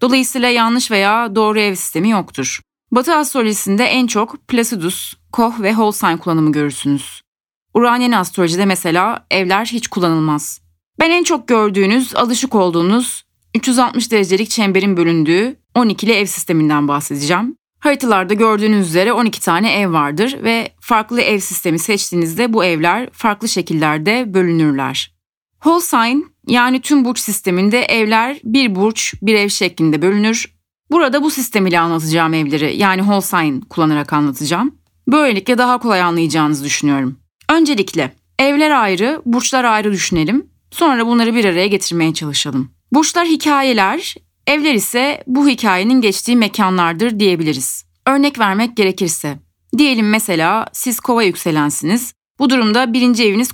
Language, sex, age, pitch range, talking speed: Turkish, female, 30-49, 170-245 Hz, 125 wpm